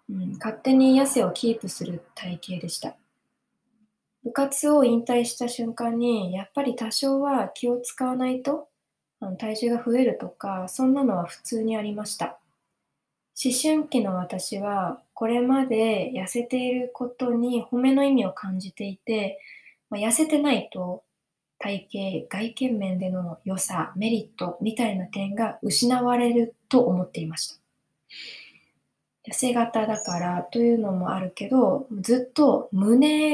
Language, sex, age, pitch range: Japanese, female, 20-39, 195-250 Hz